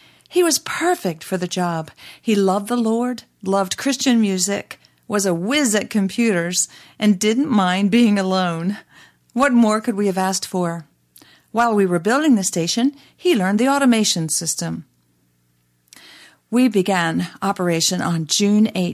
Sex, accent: female, American